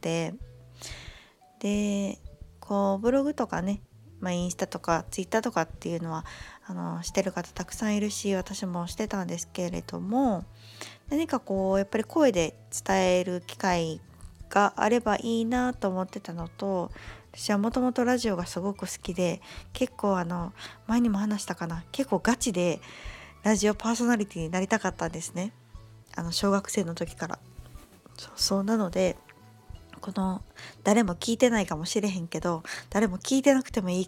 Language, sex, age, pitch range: Japanese, female, 20-39, 170-215 Hz